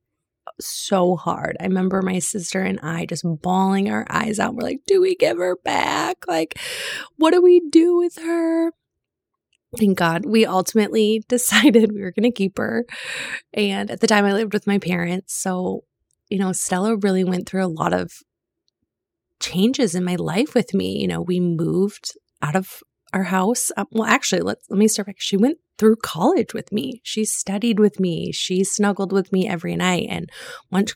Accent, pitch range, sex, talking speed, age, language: American, 185-225 Hz, female, 190 wpm, 20-39, English